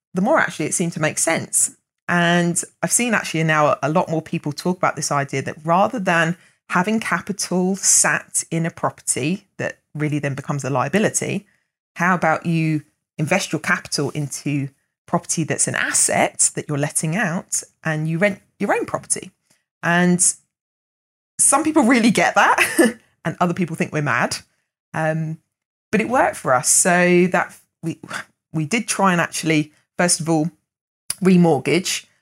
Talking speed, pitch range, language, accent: 160 wpm, 150-180 Hz, English, British